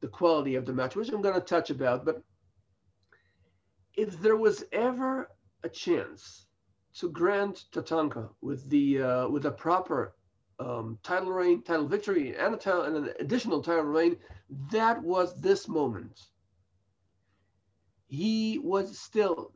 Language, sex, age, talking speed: English, male, 50-69, 145 wpm